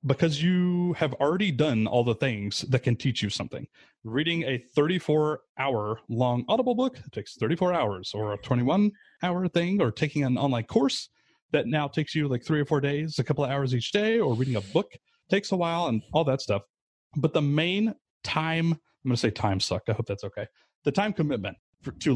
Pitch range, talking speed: 115-155 Hz, 205 wpm